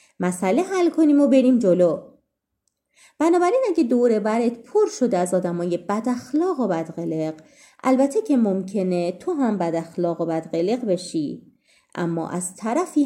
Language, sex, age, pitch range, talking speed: Persian, female, 30-49, 180-245 Hz, 140 wpm